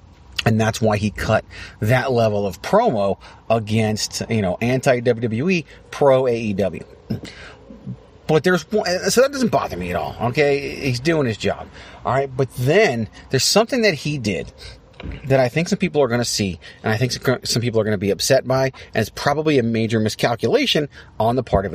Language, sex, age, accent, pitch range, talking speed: English, male, 30-49, American, 95-130 Hz, 185 wpm